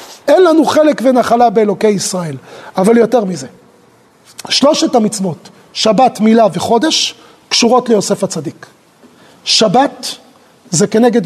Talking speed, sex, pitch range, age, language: 105 wpm, male, 205-275 Hz, 40-59, Hebrew